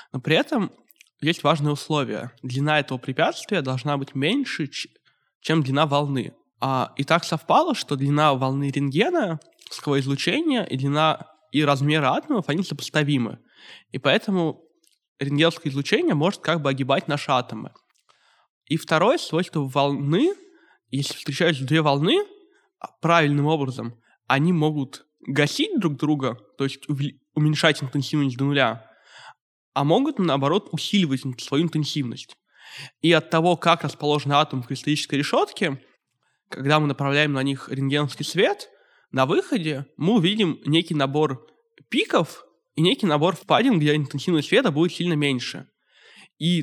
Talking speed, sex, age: 130 wpm, male, 20-39